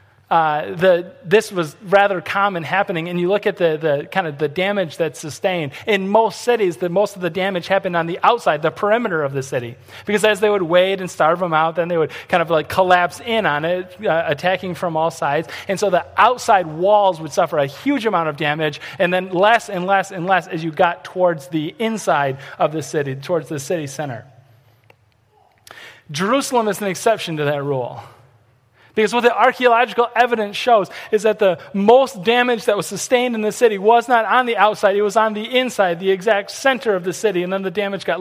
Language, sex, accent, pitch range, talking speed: English, male, American, 155-210 Hz, 210 wpm